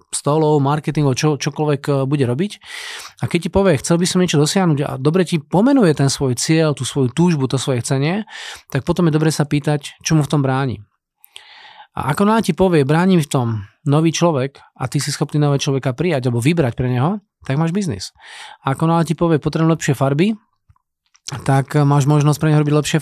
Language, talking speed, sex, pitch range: Slovak, 205 wpm, male, 140-170 Hz